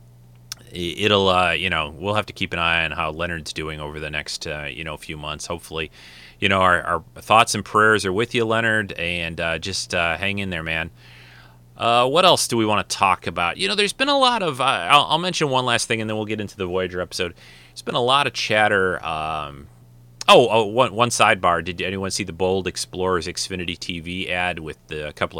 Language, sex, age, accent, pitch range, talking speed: English, male, 30-49, American, 75-105 Hz, 230 wpm